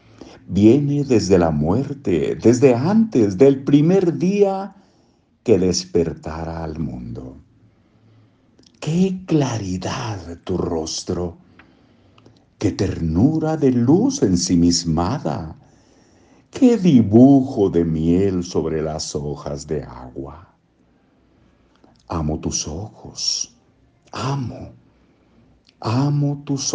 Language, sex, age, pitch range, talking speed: English, male, 60-79, 85-130 Hz, 85 wpm